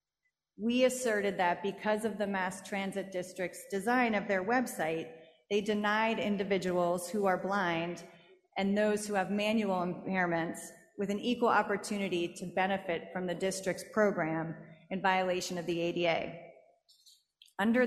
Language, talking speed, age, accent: English, 140 wpm, 30-49, American